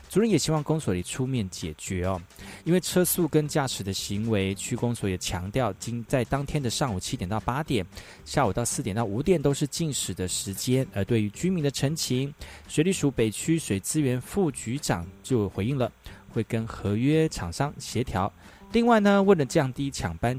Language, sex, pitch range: Chinese, male, 100-150 Hz